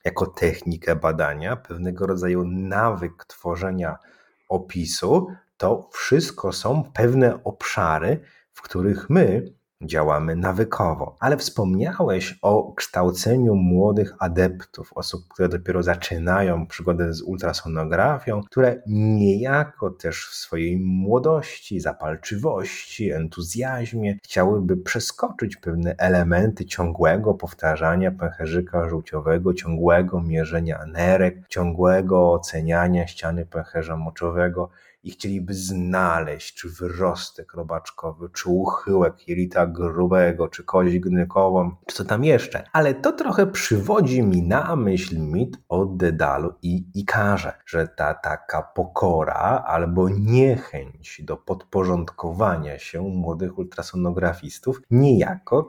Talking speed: 105 wpm